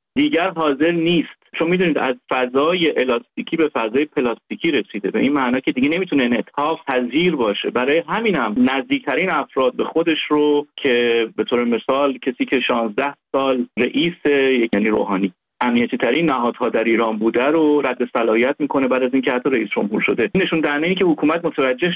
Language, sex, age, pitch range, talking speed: Persian, male, 40-59, 120-170 Hz, 180 wpm